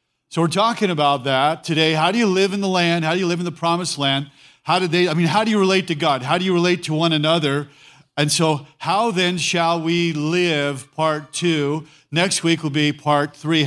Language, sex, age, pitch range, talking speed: English, male, 40-59, 145-180 Hz, 235 wpm